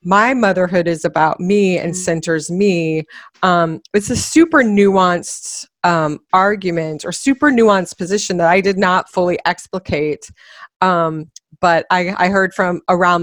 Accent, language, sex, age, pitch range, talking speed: American, English, female, 30-49, 165-190 Hz, 145 wpm